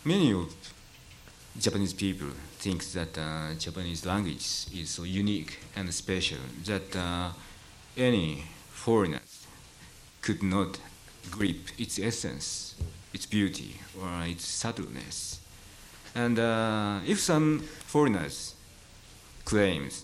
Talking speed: 100 wpm